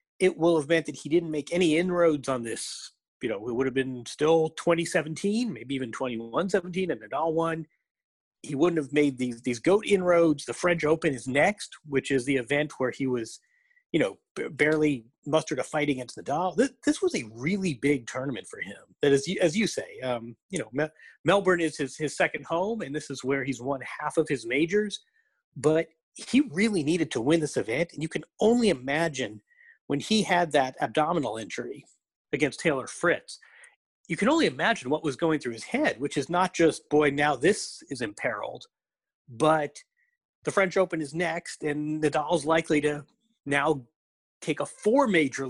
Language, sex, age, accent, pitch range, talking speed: English, male, 30-49, American, 140-180 Hz, 190 wpm